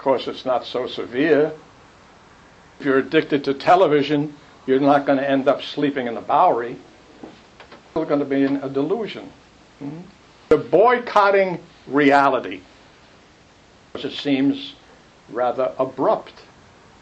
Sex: male